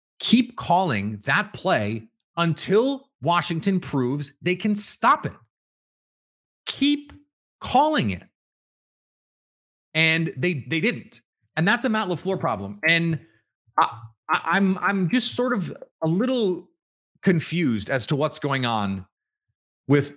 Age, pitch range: 30-49, 125-190 Hz